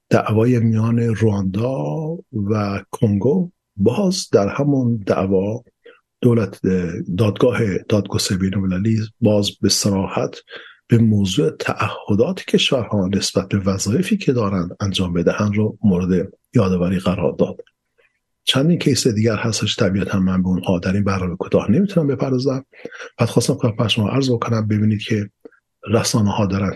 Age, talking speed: 50-69, 130 wpm